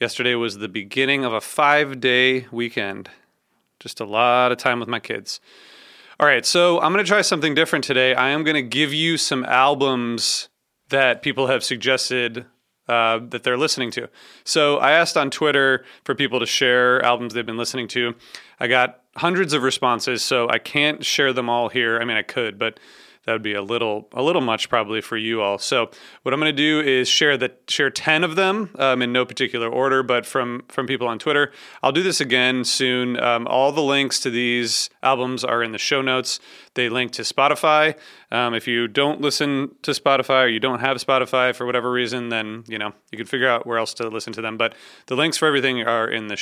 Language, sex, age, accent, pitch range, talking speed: English, male, 30-49, American, 120-140 Hz, 215 wpm